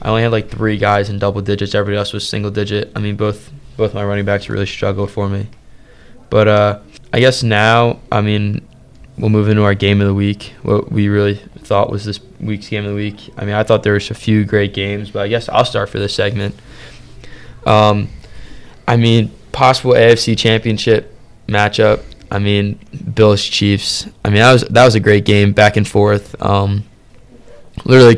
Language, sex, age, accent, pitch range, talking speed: English, male, 20-39, American, 100-110 Hz, 200 wpm